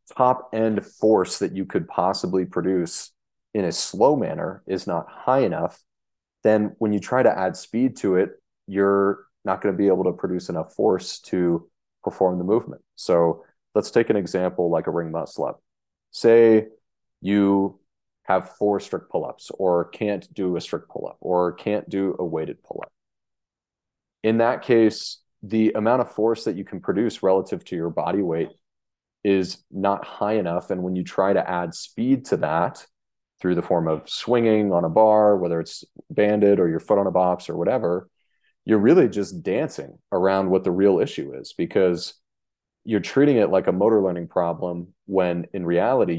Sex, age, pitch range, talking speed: male, 30-49, 90-105 Hz, 175 wpm